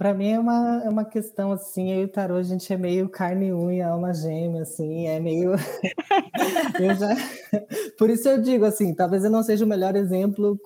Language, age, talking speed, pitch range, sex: Portuguese, 20-39, 195 wpm, 180-220 Hz, female